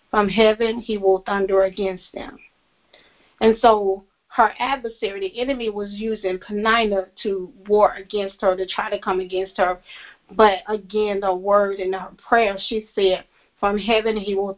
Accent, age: American, 40-59